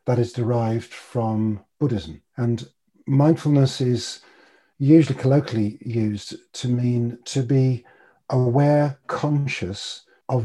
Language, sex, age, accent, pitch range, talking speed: English, male, 40-59, British, 115-135 Hz, 105 wpm